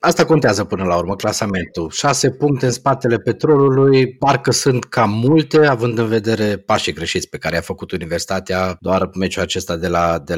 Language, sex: Romanian, male